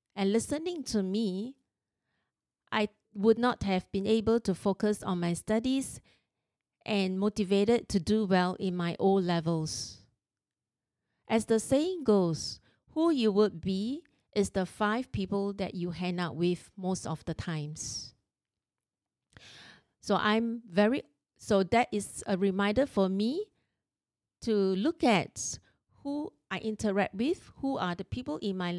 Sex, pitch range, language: female, 180-230 Hz, English